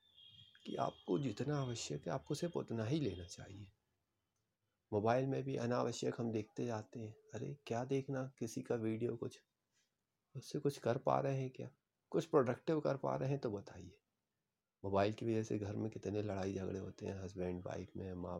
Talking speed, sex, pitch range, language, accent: 185 wpm, male, 100-135 Hz, Hindi, native